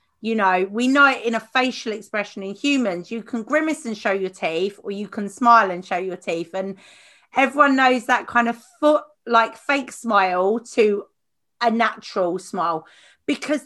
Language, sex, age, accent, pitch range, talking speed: English, female, 30-49, British, 210-285 Hz, 180 wpm